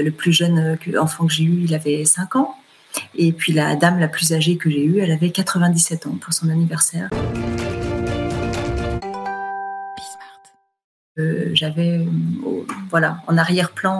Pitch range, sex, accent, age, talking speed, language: 160-180 Hz, female, French, 30-49, 145 wpm, French